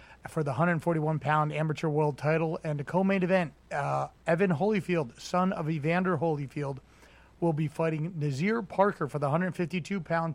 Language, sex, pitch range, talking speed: English, male, 145-170 Hz, 155 wpm